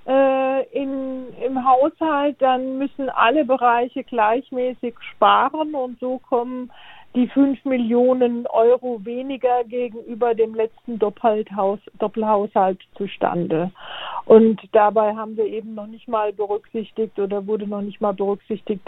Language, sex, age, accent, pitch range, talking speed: German, female, 50-69, German, 210-250 Hz, 120 wpm